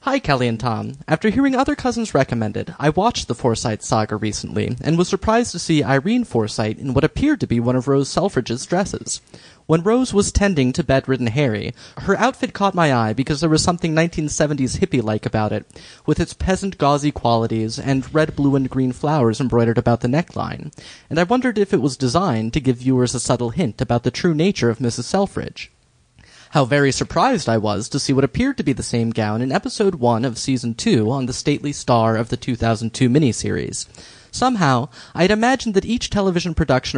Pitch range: 120-165 Hz